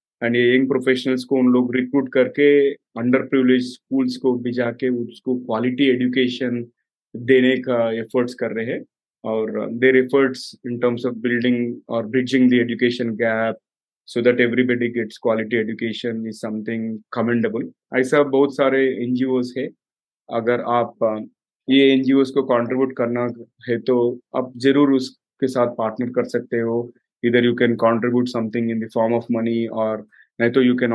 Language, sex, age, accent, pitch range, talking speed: Hindi, male, 30-49, native, 120-135 Hz, 80 wpm